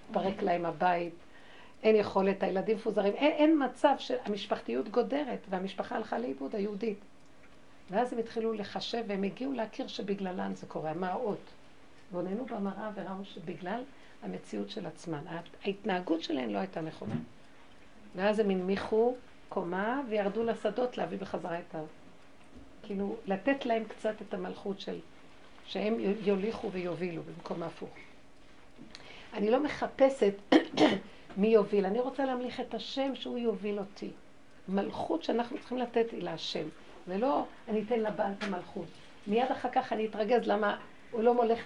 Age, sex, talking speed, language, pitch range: 60-79, female, 140 wpm, Hebrew, 195-235 Hz